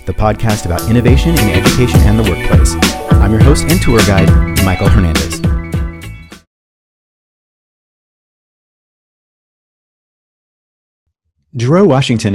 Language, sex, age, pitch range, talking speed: English, male, 30-49, 100-130 Hz, 90 wpm